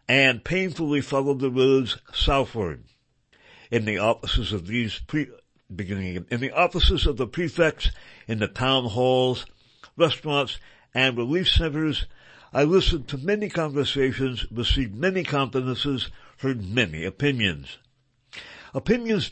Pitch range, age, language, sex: 115-150 Hz, 60-79, English, male